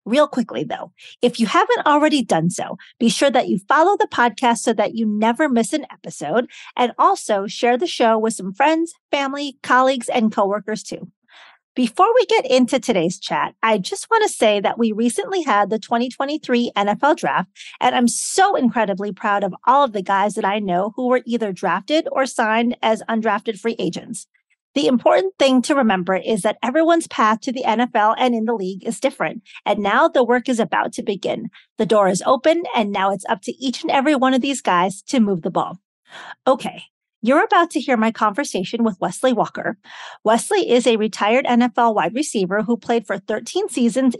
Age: 40-59